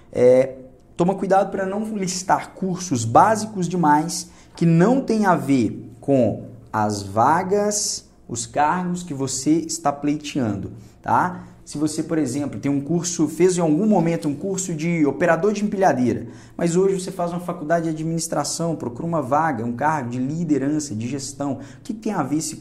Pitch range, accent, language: 125-175 Hz, Brazilian, Portuguese